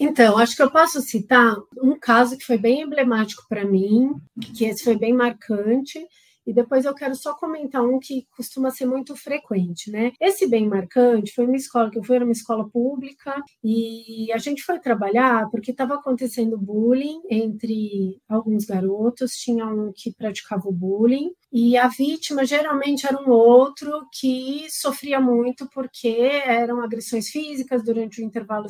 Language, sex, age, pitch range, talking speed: Portuguese, female, 30-49, 225-265 Hz, 165 wpm